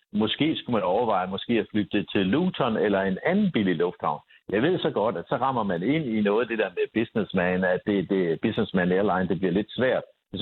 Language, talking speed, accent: Danish, 220 wpm, native